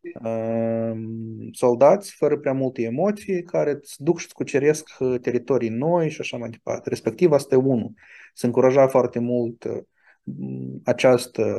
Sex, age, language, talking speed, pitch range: male, 20-39, Romanian, 135 wpm, 115-140 Hz